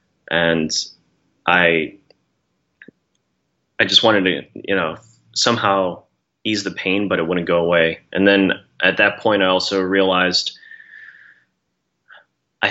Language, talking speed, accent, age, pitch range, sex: English, 125 wpm, American, 30-49, 90-100 Hz, male